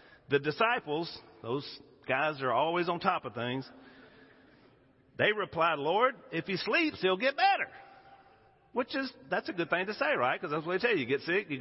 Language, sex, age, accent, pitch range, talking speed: English, male, 50-69, American, 130-185 Hz, 195 wpm